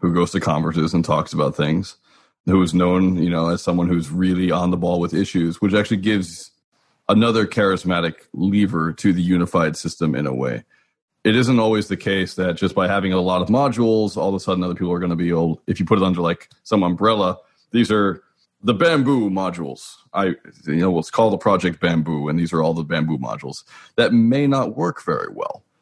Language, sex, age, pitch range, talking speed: English, male, 30-49, 85-110 Hz, 220 wpm